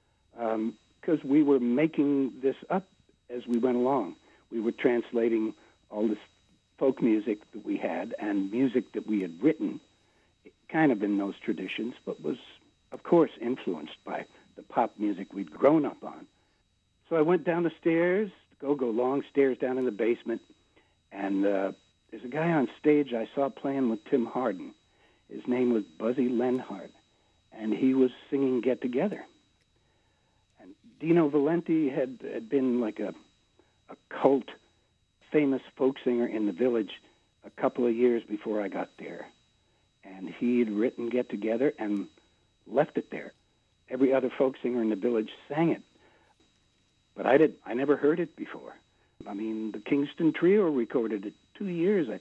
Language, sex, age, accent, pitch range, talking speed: English, male, 60-79, American, 110-140 Hz, 160 wpm